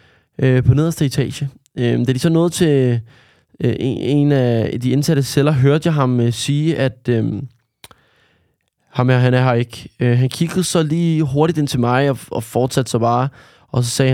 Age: 20-39